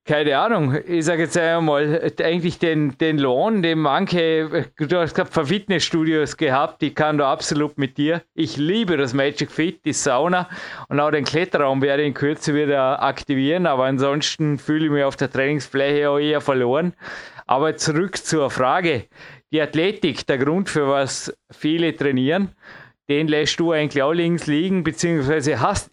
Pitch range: 145-170 Hz